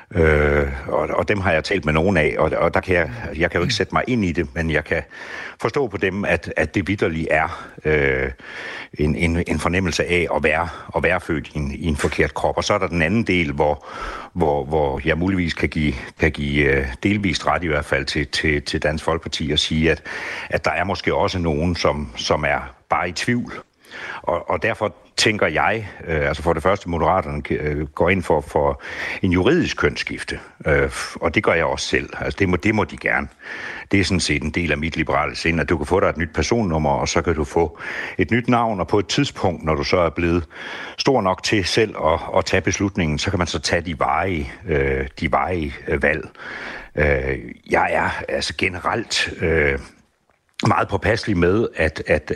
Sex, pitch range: male, 75-90 Hz